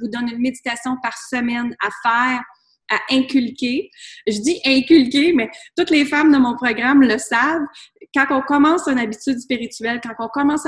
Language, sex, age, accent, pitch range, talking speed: French, female, 30-49, Canadian, 215-260 Hz, 175 wpm